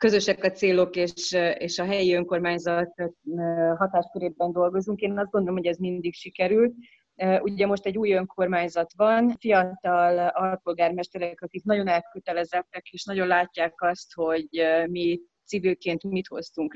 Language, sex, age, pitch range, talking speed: Hungarian, female, 30-49, 170-195 Hz, 135 wpm